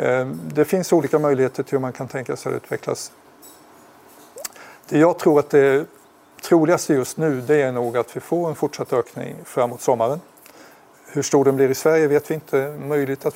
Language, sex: Swedish, male